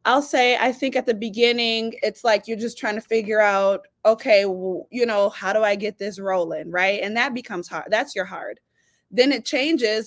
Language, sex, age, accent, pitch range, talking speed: English, female, 20-39, American, 205-250 Hz, 210 wpm